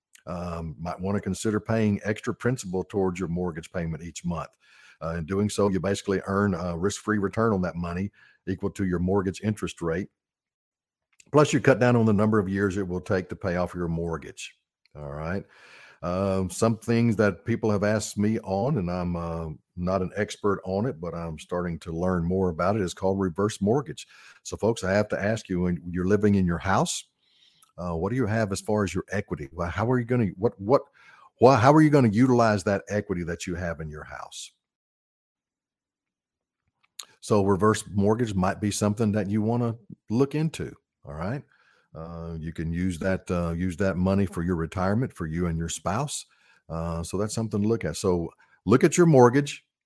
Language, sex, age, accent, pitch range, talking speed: English, male, 50-69, American, 90-110 Hz, 205 wpm